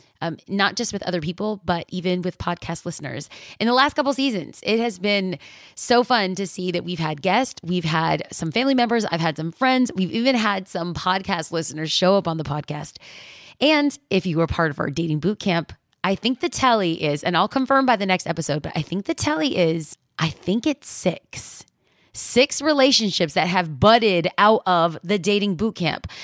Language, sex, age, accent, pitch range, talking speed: English, female, 30-49, American, 165-240 Hz, 205 wpm